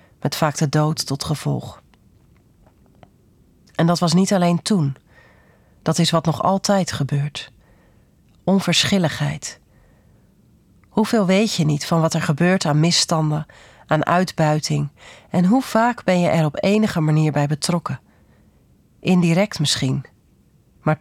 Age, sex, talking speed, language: 40-59, female, 130 wpm, Dutch